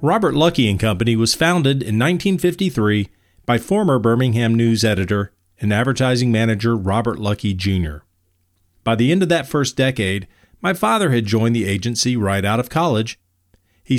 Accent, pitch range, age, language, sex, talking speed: American, 95-135 Hz, 40-59, English, male, 160 wpm